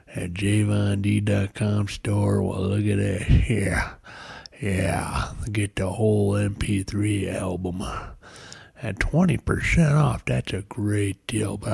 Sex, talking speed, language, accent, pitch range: male, 110 wpm, English, American, 100-135 Hz